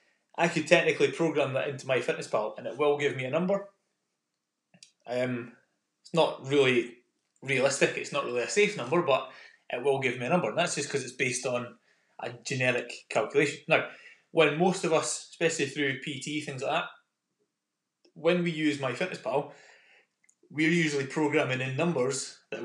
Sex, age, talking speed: male, 20-39, 180 wpm